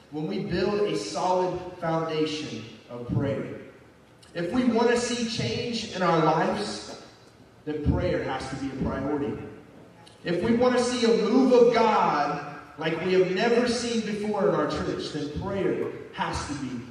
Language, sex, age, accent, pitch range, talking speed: English, male, 30-49, American, 140-190 Hz, 165 wpm